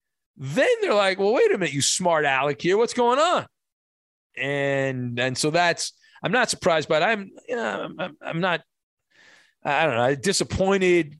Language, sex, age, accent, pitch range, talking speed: English, male, 40-59, American, 160-210 Hz, 170 wpm